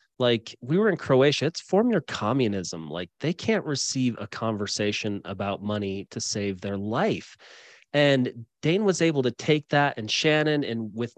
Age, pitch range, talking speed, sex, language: 30-49, 110-140 Hz, 170 wpm, male, English